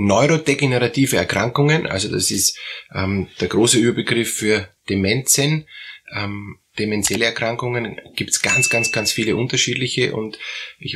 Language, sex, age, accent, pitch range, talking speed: German, male, 20-39, Austrian, 105-130 Hz, 125 wpm